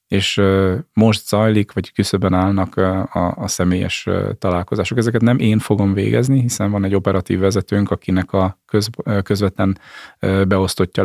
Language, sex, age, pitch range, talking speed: Hungarian, male, 30-49, 95-105 Hz, 130 wpm